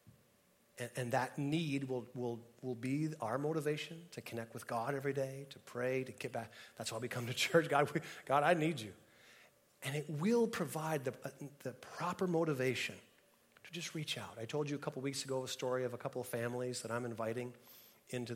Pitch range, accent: 125-160 Hz, American